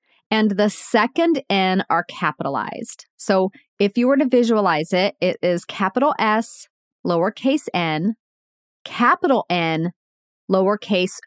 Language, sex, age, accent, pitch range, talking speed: English, female, 40-59, American, 180-245 Hz, 115 wpm